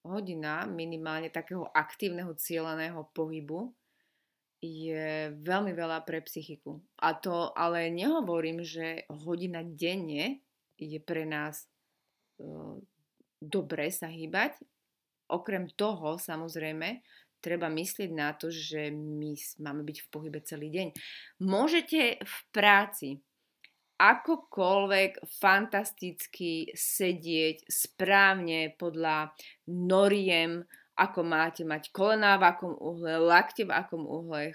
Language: Slovak